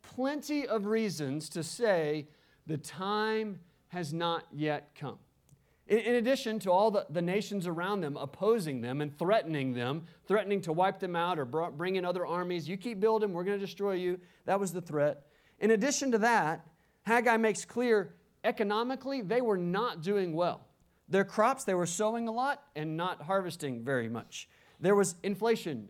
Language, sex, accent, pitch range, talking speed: English, male, American, 175-235 Hz, 170 wpm